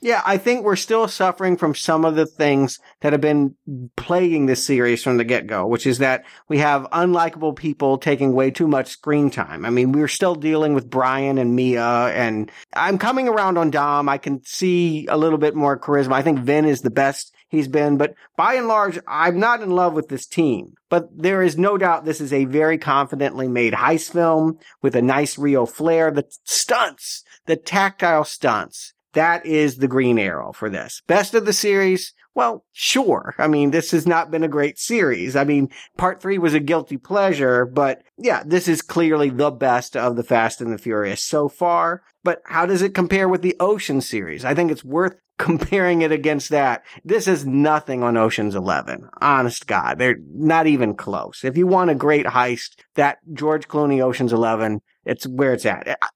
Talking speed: 200 wpm